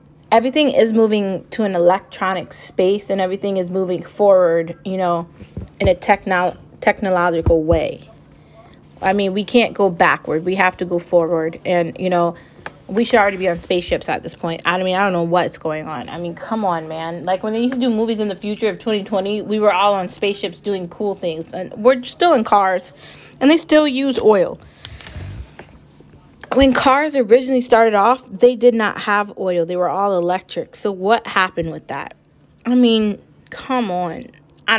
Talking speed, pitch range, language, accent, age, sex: 190 wpm, 175-220 Hz, English, American, 20-39, female